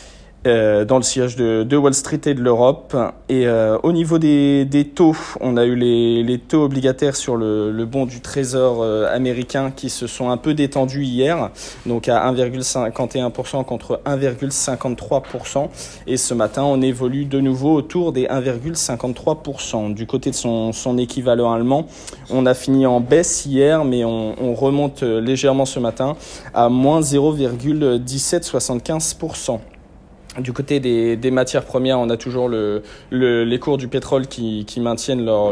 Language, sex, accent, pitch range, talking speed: French, male, French, 120-140 Hz, 155 wpm